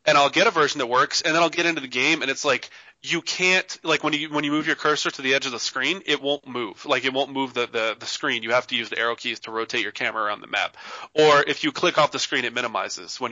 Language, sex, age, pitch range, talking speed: English, male, 20-39, 120-155 Hz, 305 wpm